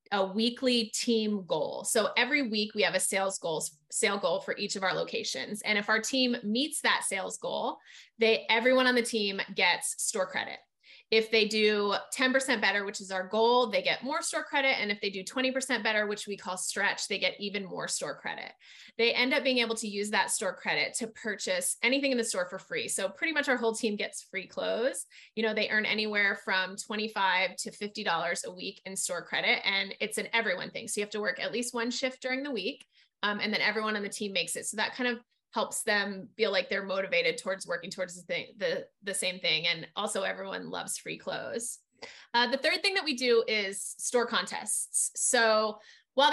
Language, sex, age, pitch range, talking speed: English, female, 20-39, 195-245 Hz, 220 wpm